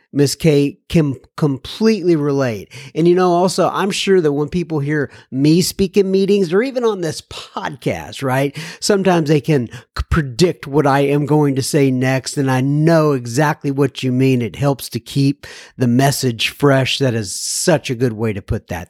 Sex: male